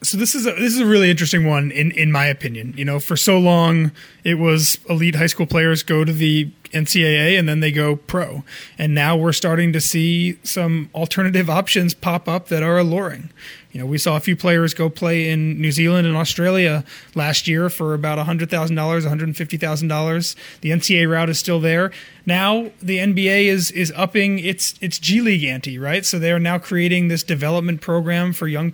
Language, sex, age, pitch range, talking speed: English, male, 30-49, 160-190 Hz, 215 wpm